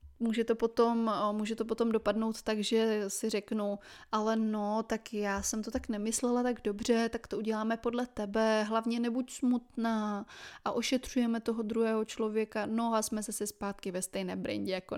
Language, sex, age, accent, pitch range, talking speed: Czech, female, 20-39, native, 215-240 Hz, 170 wpm